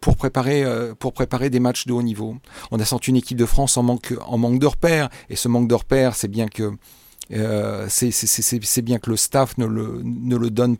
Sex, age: male, 40-59